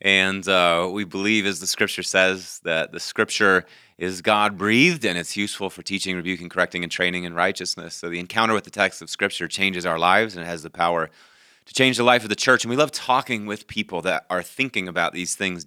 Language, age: English, 30-49